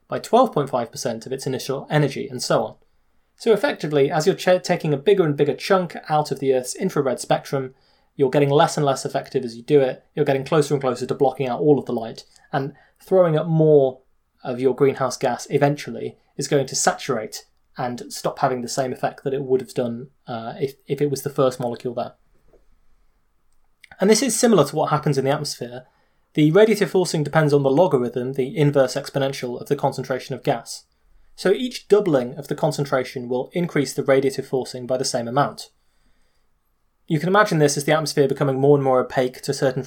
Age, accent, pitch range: 20-39, British, 130-155 Hz